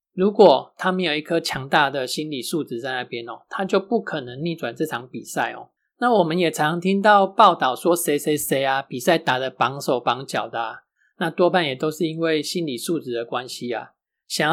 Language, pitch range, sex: Chinese, 135-180 Hz, male